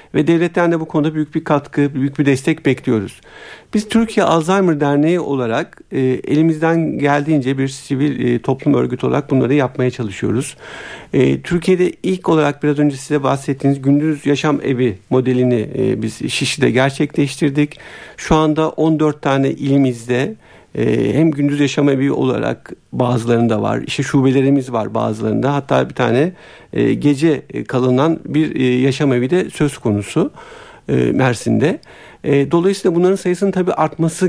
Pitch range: 130-165 Hz